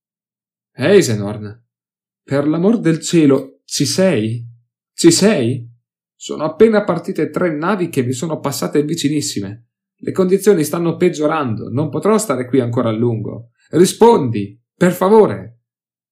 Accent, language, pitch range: native, Italian, 110-145 Hz